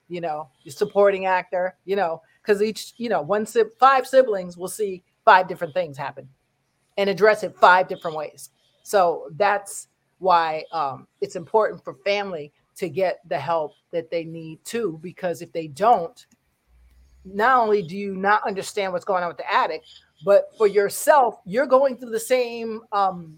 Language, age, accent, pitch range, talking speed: English, 40-59, American, 180-235 Hz, 175 wpm